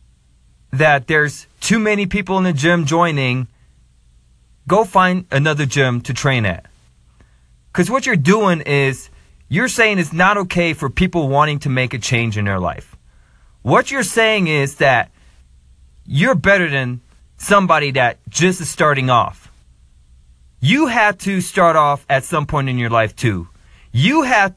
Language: English